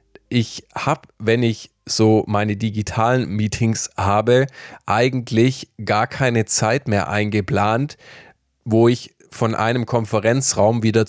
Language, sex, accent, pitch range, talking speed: German, male, German, 110-130 Hz, 115 wpm